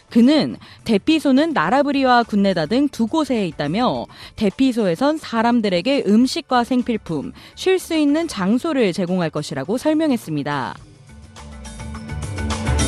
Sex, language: female, Korean